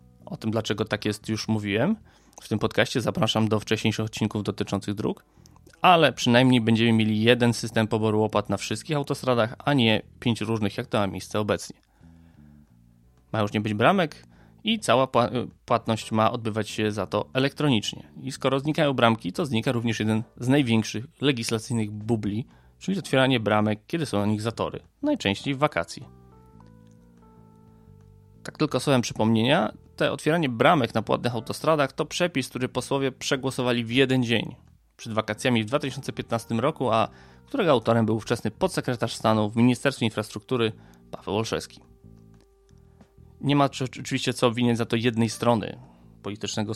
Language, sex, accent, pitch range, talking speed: Polish, male, native, 105-125 Hz, 150 wpm